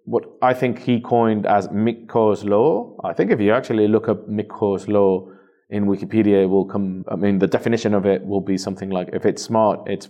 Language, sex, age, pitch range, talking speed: English, male, 30-49, 100-120 Hz, 215 wpm